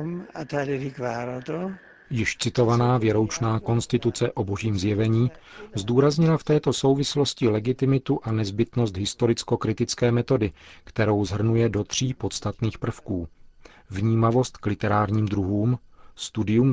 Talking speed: 95 wpm